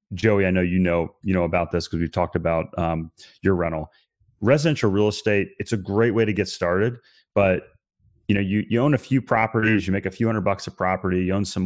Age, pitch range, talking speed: 30-49, 95-120 Hz, 235 wpm